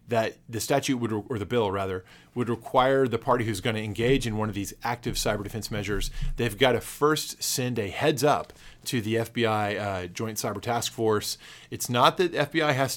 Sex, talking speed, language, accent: male, 210 wpm, English, American